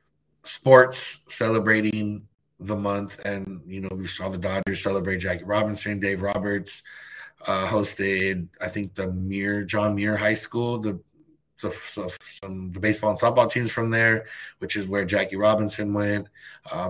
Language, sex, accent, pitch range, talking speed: English, male, American, 95-115 Hz, 140 wpm